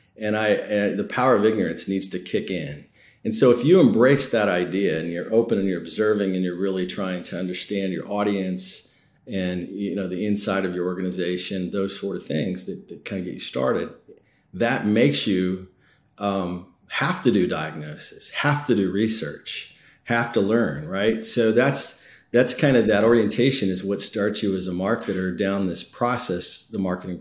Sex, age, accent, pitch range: male, 40-59, American, 90-110 Hz